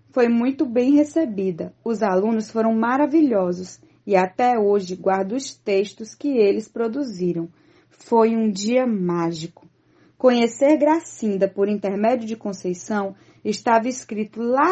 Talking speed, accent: 120 wpm, Brazilian